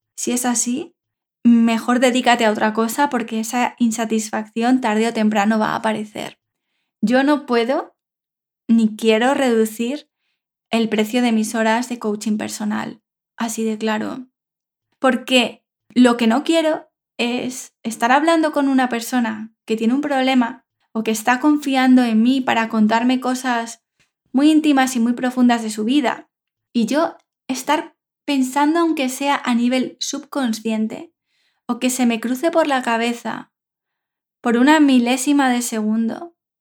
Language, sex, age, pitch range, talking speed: English, female, 10-29, 220-260 Hz, 145 wpm